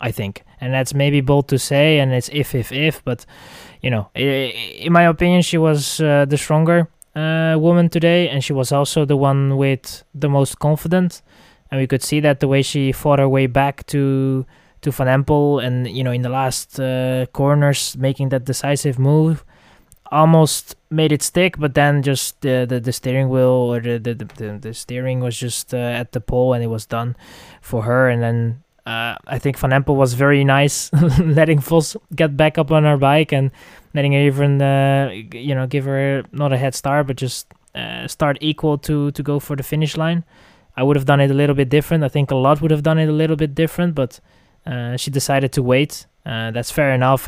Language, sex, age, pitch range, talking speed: English, male, 20-39, 125-150 Hz, 215 wpm